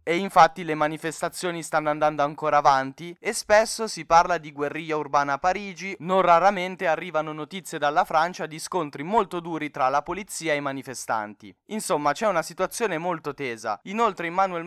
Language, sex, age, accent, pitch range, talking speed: Italian, male, 10-29, native, 150-185 Hz, 170 wpm